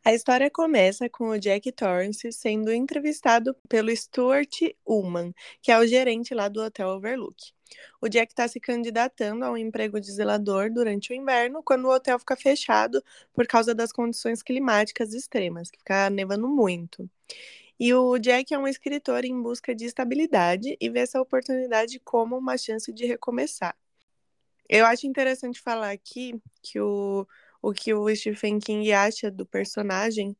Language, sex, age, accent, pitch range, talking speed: Portuguese, female, 20-39, Brazilian, 210-255 Hz, 160 wpm